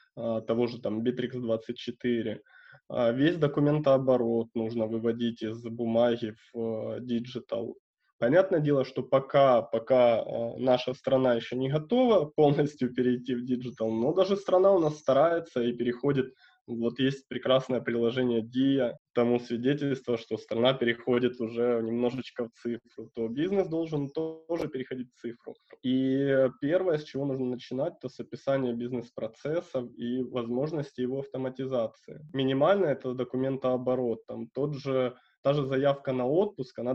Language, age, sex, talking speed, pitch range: Russian, 20-39, male, 130 wpm, 120-140 Hz